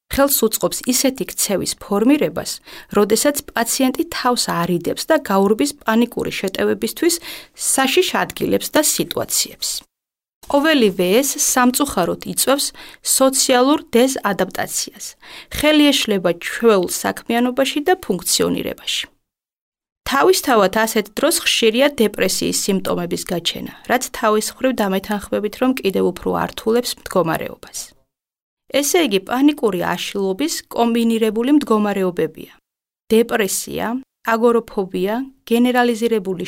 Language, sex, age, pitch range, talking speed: English, female, 30-49, 205-275 Hz, 60 wpm